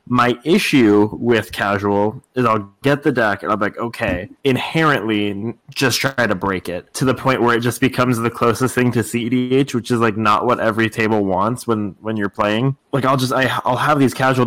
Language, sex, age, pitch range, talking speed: English, male, 20-39, 110-130 Hz, 210 wpm